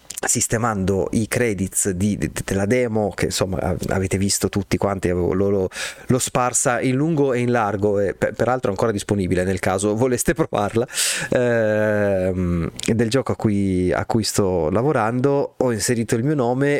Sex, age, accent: male, 30-49, native